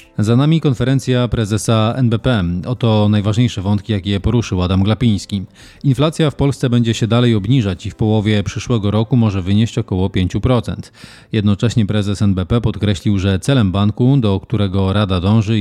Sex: male